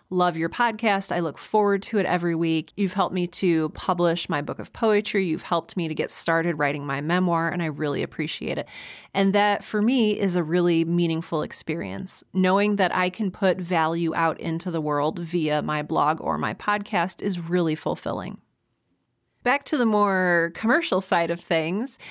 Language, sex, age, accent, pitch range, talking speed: English, female, 30-49, American, 170-205 Hz, 185 wpm